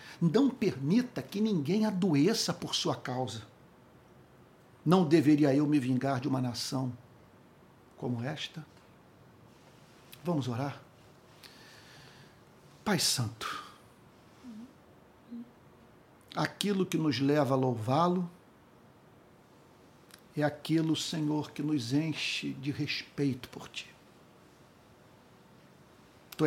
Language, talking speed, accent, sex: Portuguese, 90 wpm, Brazilian, male